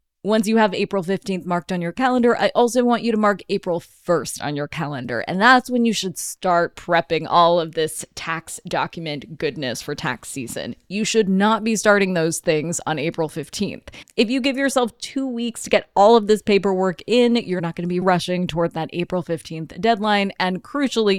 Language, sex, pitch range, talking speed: English, female, 170-215 Hz, 205 wpm